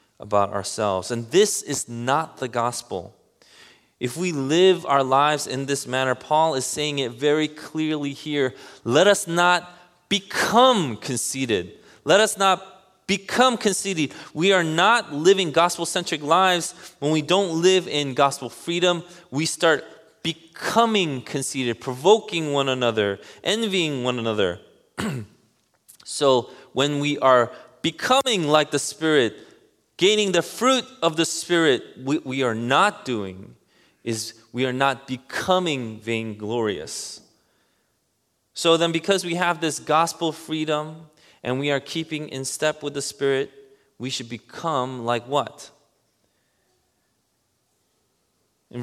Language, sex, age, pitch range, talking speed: English, male, 20-39, 125-170 Hz, 130 wpm